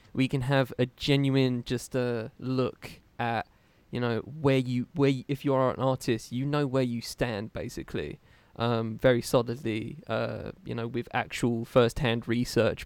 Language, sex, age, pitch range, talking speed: English, male, 20-39, 115-130 Hz, 175 wpm